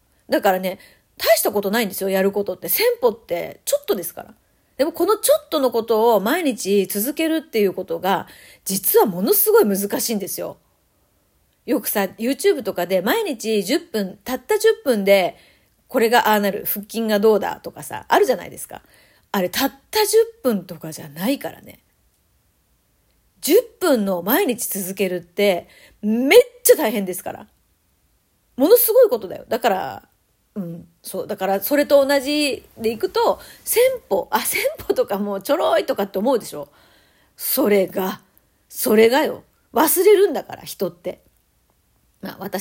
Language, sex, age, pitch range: Japanese, female, 40-59, 195-325 Hz